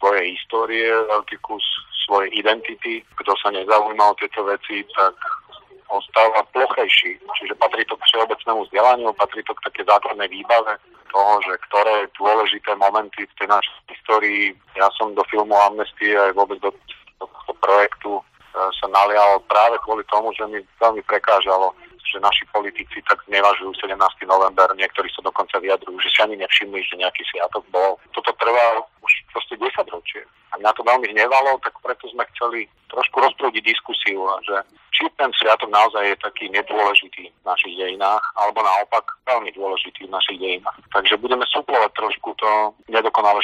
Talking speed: 160 wpm